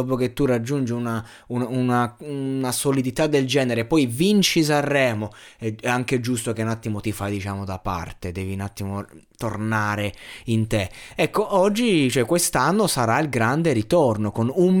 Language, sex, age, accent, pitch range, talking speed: Italian, male, 20-39, native, 110-145 Hz, 165 wpm